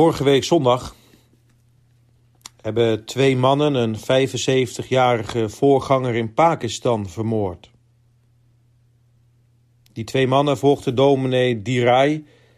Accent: Dutch